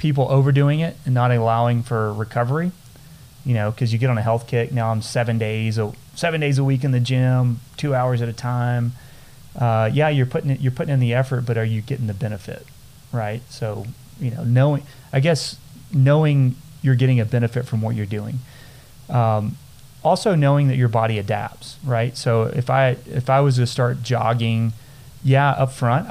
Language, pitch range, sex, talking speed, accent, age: English, 115-135 Hz, male, 195 wpm, American, 30-49